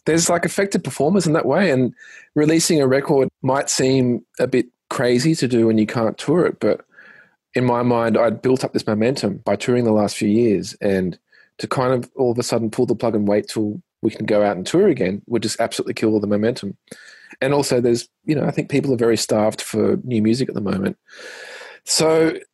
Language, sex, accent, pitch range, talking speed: English, male, Australian, 110-140 Hz, 225 wpm